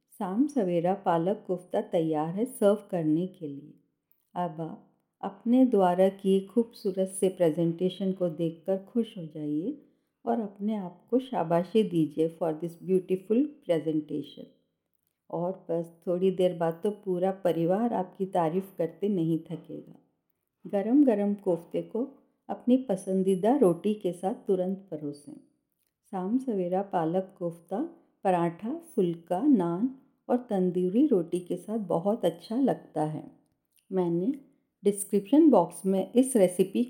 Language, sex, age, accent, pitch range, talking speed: Hindi, female, 50-69, native, 175-230 Hz, 125 wpm